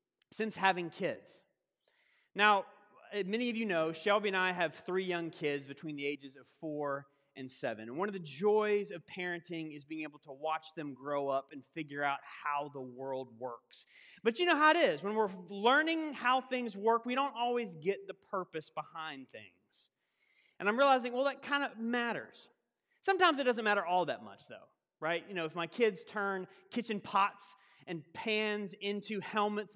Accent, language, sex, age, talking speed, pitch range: American, English, male, 30-49, 190 wpm, 165-235 Hz